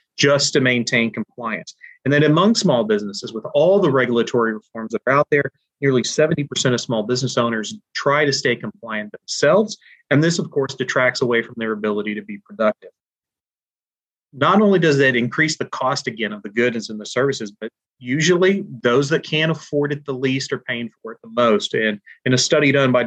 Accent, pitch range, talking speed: American, 125-160 Hz, 200 wpm